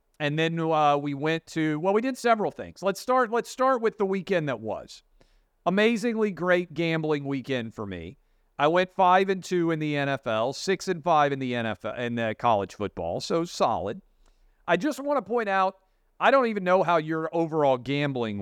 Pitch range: 145-205 Hz